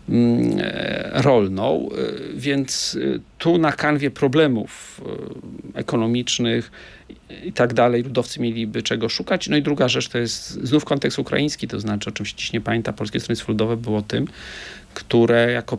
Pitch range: 110-135 Hz